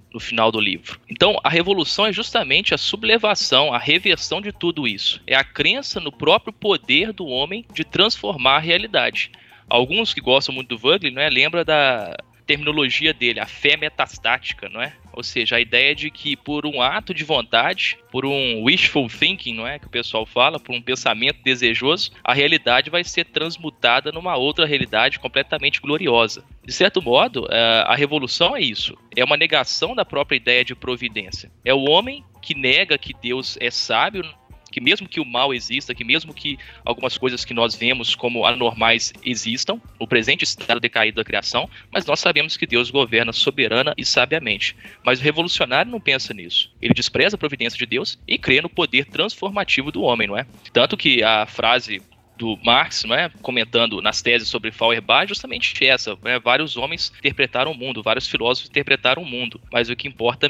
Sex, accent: male, Brazilian